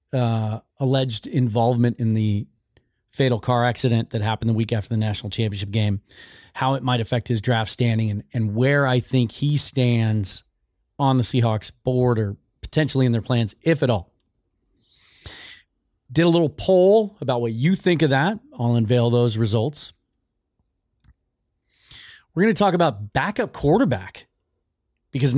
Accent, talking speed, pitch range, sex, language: American, 155 wpm, 115-150 Hz, male, English